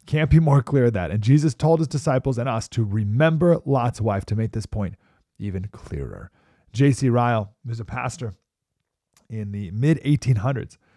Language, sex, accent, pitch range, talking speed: English, male, American, 105-140 Hz, 170 wpm